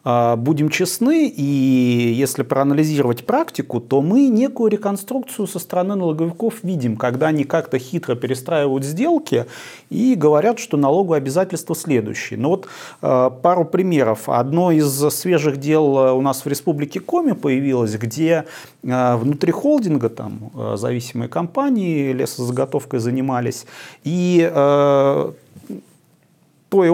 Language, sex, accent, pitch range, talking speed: Russian, male, native, 130-180 Hz, 120 wpm